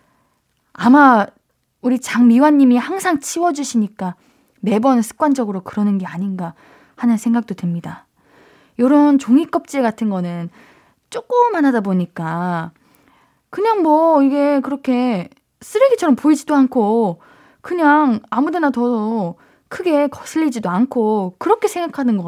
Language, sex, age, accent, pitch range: Korean, female, 20-39, native, 195-280 Hz